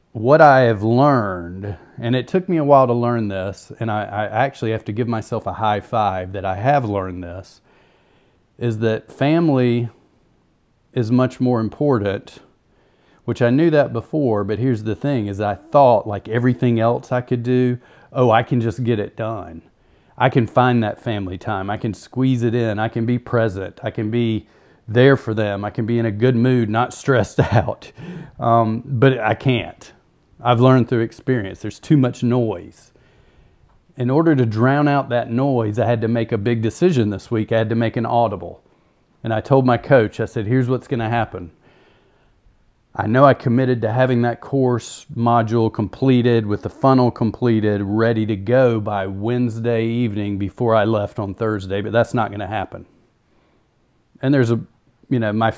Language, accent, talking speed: English, American, 185 wpm